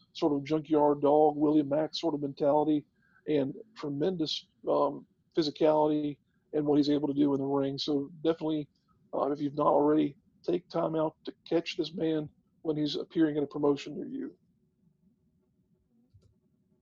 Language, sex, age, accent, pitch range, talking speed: English, male, 50-69, American, 145-170 Hz, 155 wpm